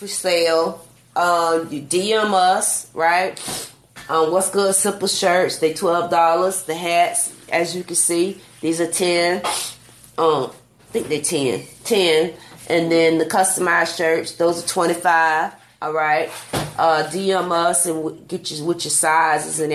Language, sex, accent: English, female, American